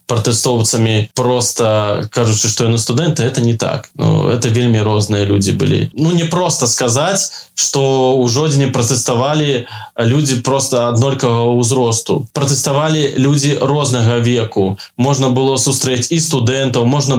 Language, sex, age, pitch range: Russian, male, 20-39, 115-130 Hz